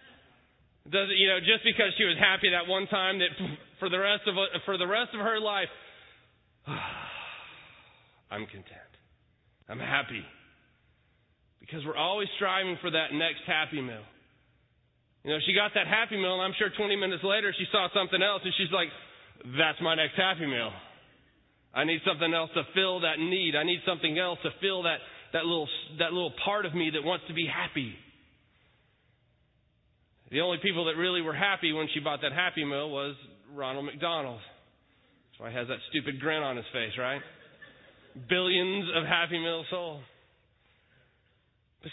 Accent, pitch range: American, 150-195 Hz